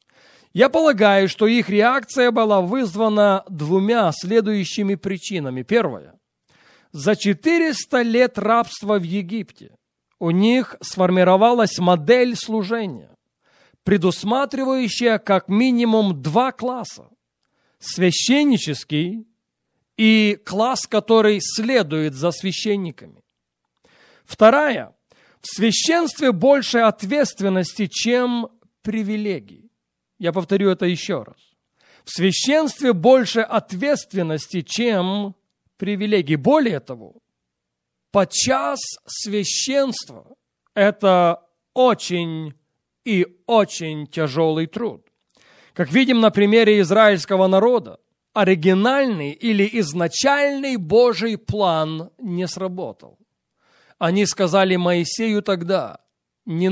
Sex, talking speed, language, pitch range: male, 85 wpm, English, 175-230 Hz